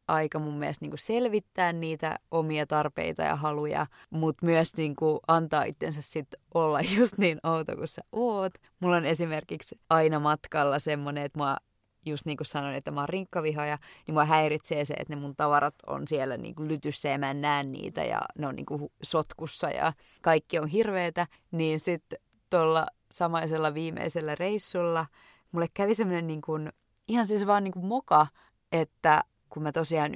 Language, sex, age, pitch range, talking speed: Finnish, female, 20-39, 150-185 Hz, 165 wpm